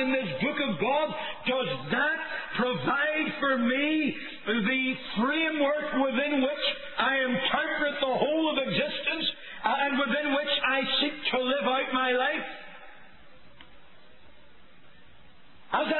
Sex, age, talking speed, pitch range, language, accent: male, 50-69, 115 wpm, 265-300 Hz, English, American